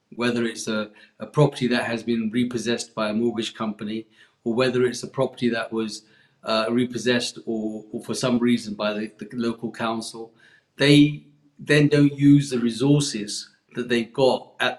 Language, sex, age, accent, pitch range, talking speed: English, male, 40-59, British, 115-130 Hz, 170 wpm